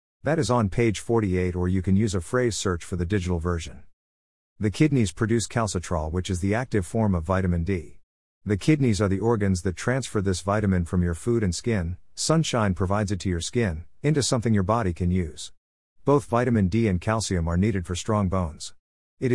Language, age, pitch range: English, 50-69, 90-115 Hz